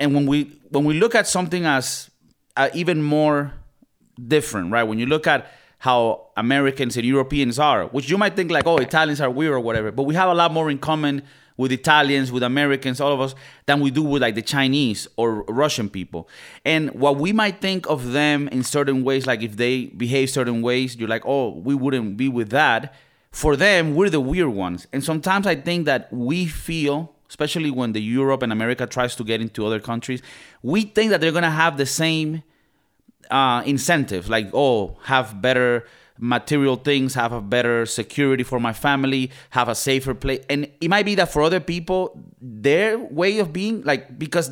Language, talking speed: English, 200 wpm